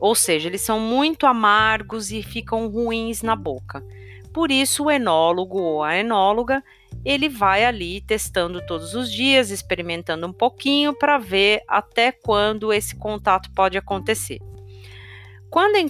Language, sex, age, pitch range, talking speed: Portuguese, female, 40-59, 180-245 Hz, 145 wpm